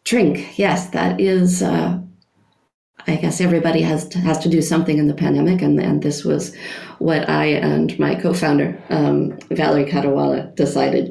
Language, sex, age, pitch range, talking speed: English, female, 40-59, 120-195 Hz, 160 wpm